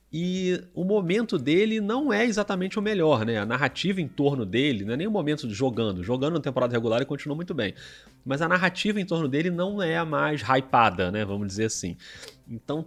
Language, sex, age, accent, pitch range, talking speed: Portuguese, male, 30-49, Brazilian, 110-150 Hz, 215 wpm